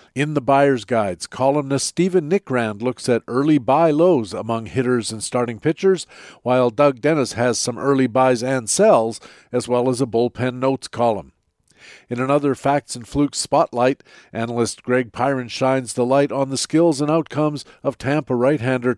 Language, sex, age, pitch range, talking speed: English, male, 50-69, 120-145 Hz, 170 wpm